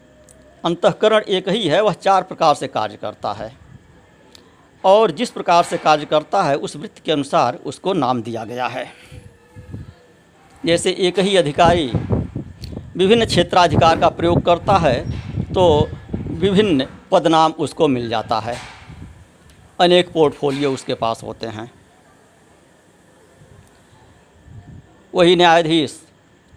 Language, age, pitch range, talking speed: Hindi, 60-79, 125-175 Hz, 115 wpm